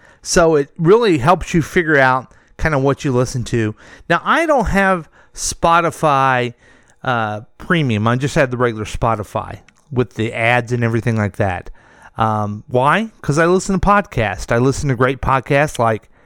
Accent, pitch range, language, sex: American, 125-190 Hz, English, male